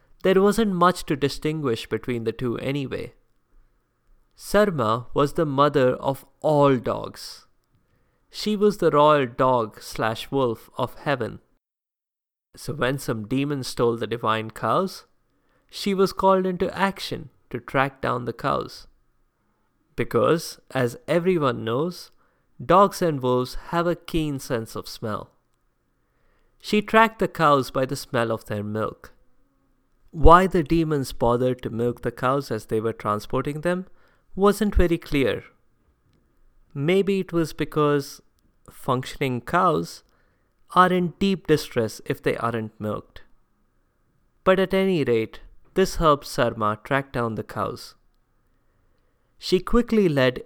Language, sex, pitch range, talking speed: English, male, 120-175 Hz, 130 wpm